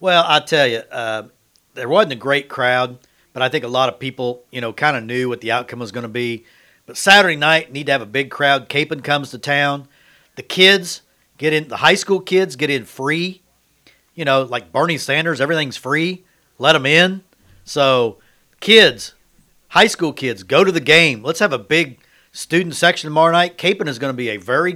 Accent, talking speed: American, 210 wpm